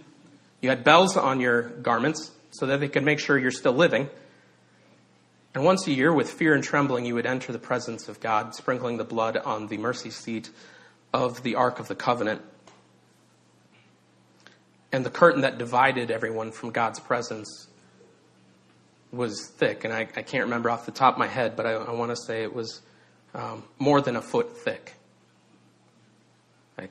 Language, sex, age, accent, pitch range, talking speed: English, male, 30-49, American, 110-140 Hz, 175 wpm